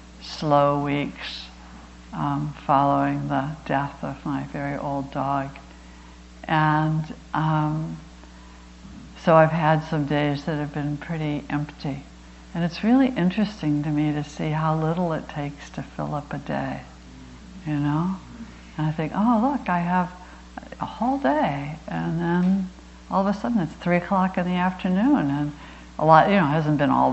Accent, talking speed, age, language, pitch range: American, 160 wpm, 60-79, English, 145-225 Hz